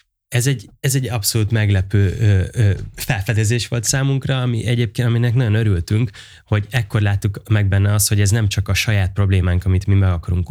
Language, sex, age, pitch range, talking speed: Hungarian, male, 20-39, 95-115 Hz, 190 wpm